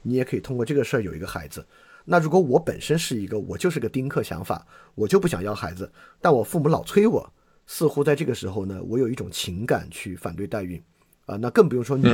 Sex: male